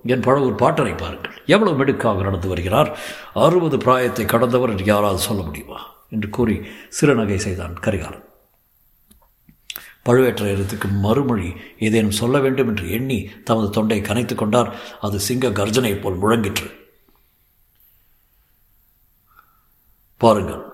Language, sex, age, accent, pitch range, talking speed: Tamil, male, 60-79, native, 100-120 Hz, 100 wpm